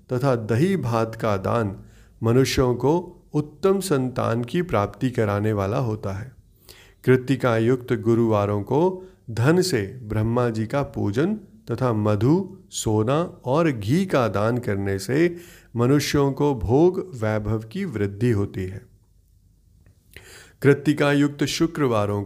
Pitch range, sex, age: 110-155 Hz, male, 30-49